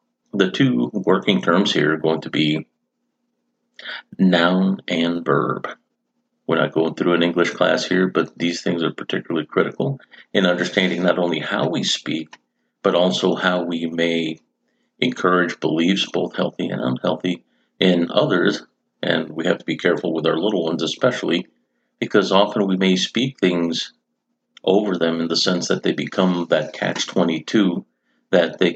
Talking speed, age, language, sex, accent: 155 wpm, 50-69, English, male, American